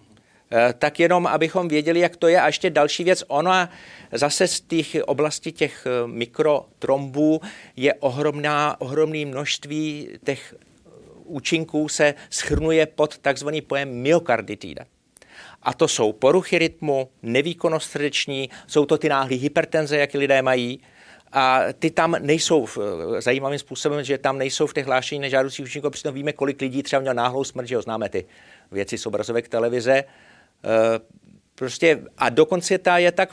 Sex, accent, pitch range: male, native, 135-155 Hz